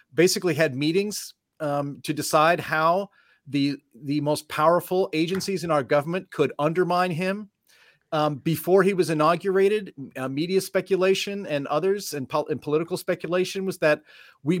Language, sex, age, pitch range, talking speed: English, male, 40-59, 150-185 Hz, 150 wpm